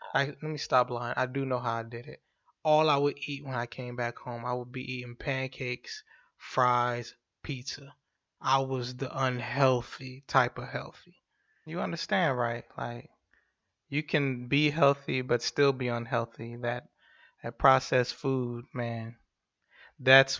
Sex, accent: male, American